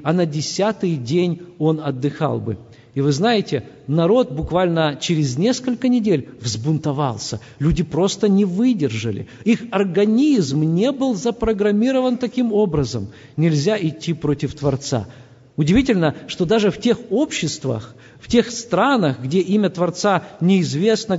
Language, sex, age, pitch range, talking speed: Russian, male, 50-69, 145-200 Hz, 125 wpm